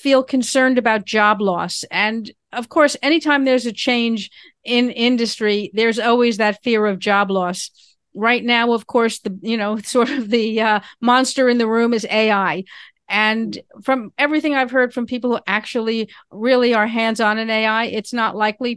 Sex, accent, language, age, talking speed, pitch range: female, American, English, 50-69, 175 wpm, 205-240 Hz